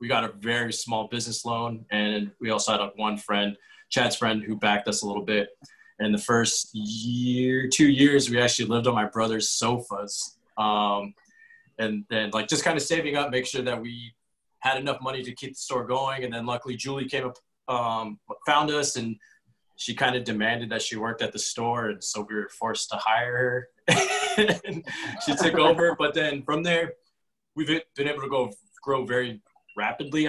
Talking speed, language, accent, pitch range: 200 wpm, English, American, 110-130 Hz